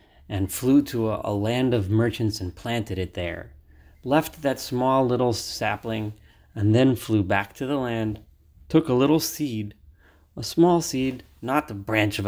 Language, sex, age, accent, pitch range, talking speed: English, male, 30-49, American, 95-120 Hz, 170 wpm